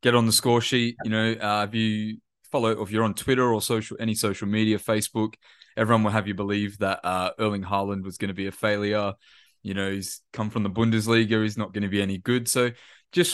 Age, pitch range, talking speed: 20-39, 95-115 Hz, 235 wpm